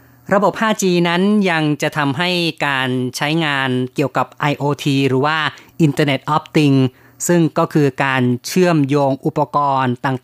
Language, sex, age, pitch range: Thai, female, 30-49, 135-160 Hz